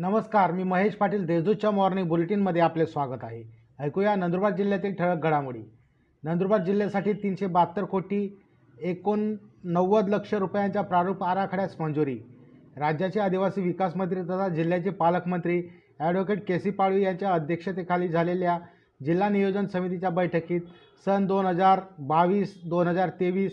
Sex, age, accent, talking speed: male, 30-49, native, 110 wpm